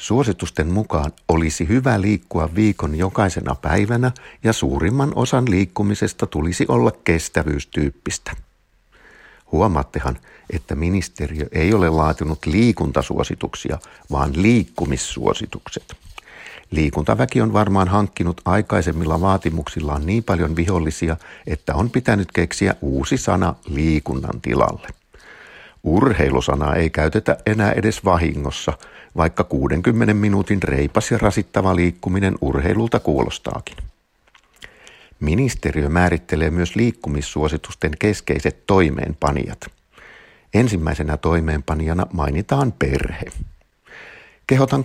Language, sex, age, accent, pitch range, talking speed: Finnish, male, 60-79, native, 75-105 Hz, 90 wpm